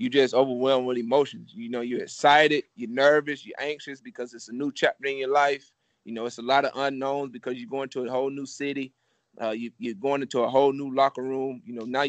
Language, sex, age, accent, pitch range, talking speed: English, male, 30-49, American, 125-140 Hz, 245 wpm